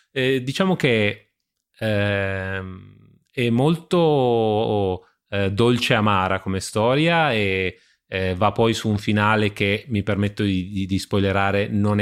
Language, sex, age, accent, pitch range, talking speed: Italian, male, 30-49, native, 100-115 Hz, 125 wpm